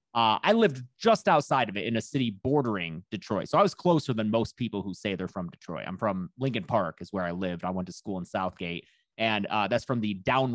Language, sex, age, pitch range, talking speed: English, male, 30-49, 110-165 Hz, 250 wpm